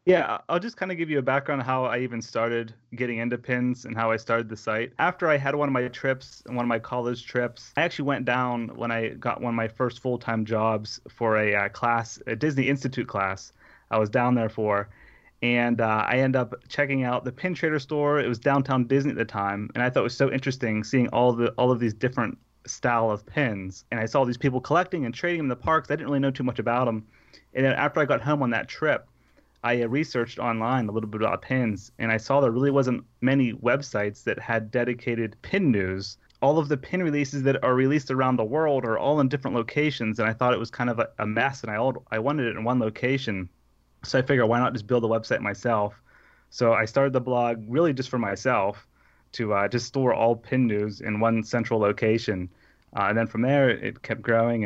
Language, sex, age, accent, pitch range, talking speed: English, male, 30-49, American, 110-135 Hz, 235 wpm